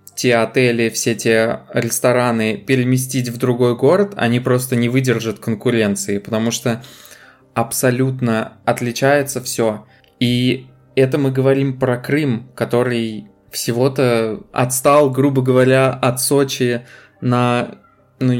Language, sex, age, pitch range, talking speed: Russian, male, 20-39, 115-135 Hz, 110 wpm